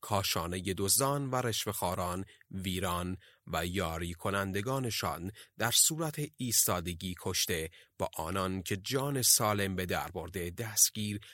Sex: male